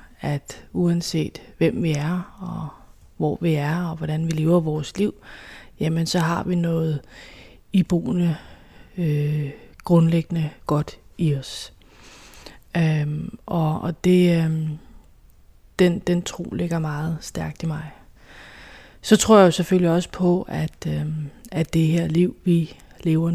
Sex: female